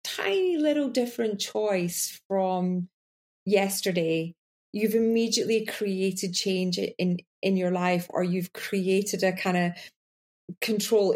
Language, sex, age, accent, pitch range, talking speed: English, female, 30-49, British, 185-225 Hz, 115 wpm